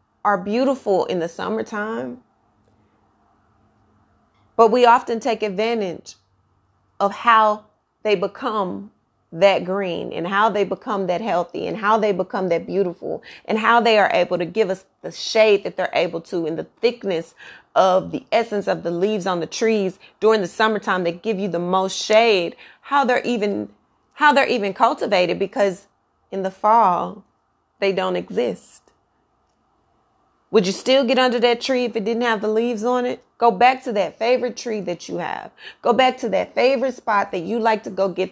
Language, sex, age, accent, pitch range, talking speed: English, female, 30-49, American, 185-230 Hz, 175 wpm